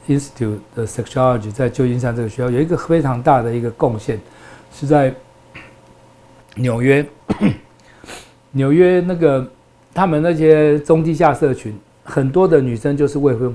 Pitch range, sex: 120-155 Hz, male